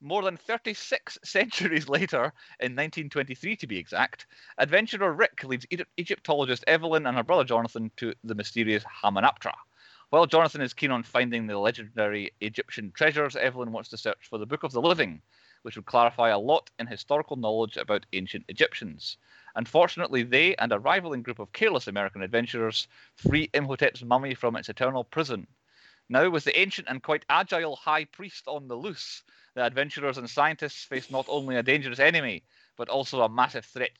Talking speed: 175 wpm